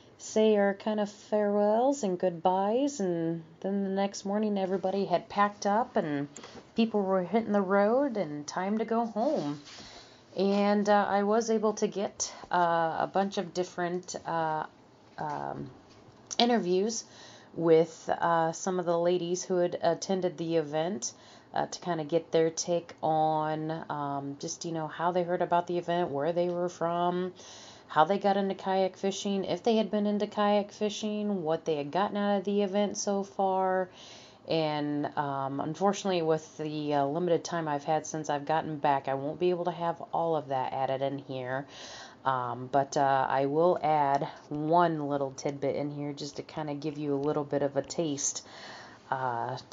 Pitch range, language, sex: 150-195 Hz, English, female